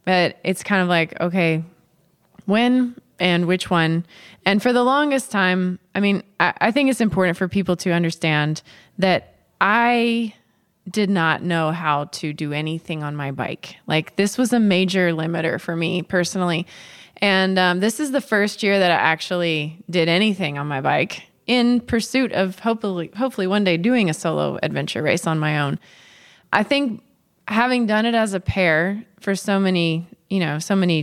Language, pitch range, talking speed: English, 165-205 Hz, 180 wpm